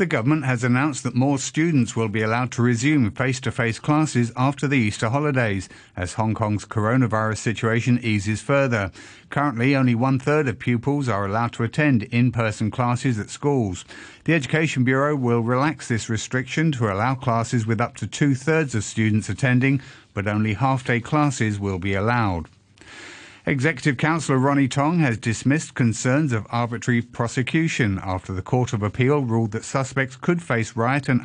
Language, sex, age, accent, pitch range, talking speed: English, male, 50-69, British, 110-140 Hz, 160 wpm